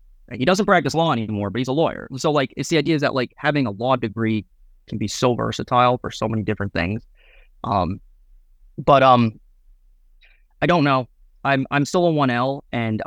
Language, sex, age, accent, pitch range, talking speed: English, male, 20-39, American, 100-125 Hz, 195 wpm